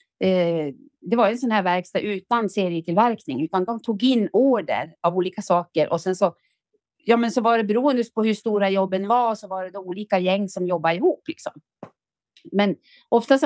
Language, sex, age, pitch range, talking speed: Swedish, female, 30-49, 190-250 Hz, 185 wpm